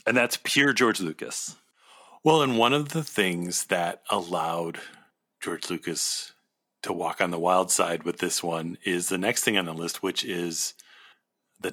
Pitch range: 90-105 Hz